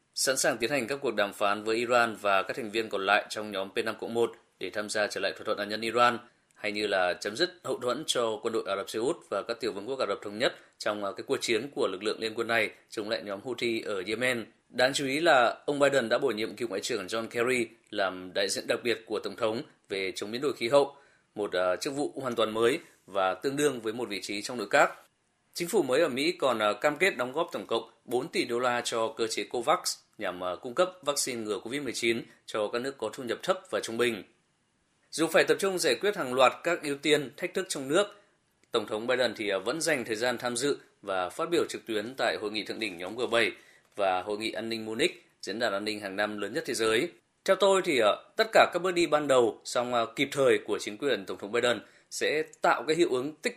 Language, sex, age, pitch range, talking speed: Vietnamese, male, 20-39, 110-160 Hz, 255 wpm